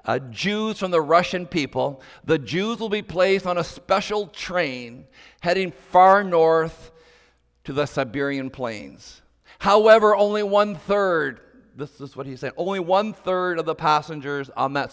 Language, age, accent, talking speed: English, 50-69, American, 150 wpm